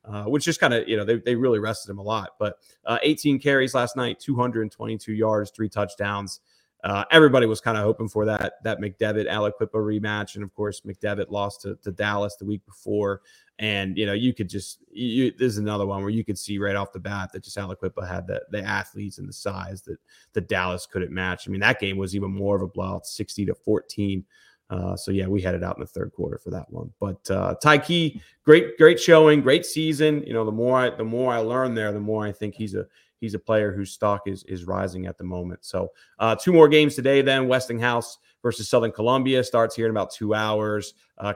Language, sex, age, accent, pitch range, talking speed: English, male, 30-49, American, 100-120 Hz, 230 wpm